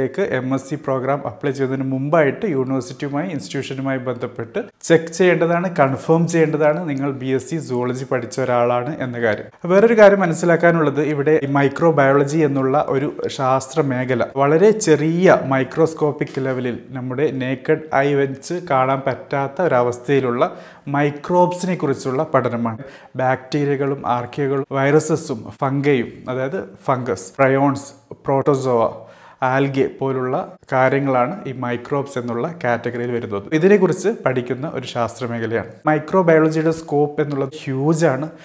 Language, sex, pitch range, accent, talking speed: Malayalam, male, 130-155 Hz, native, 100 wpm